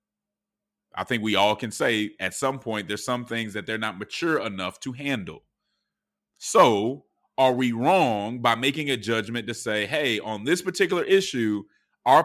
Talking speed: 170 wpm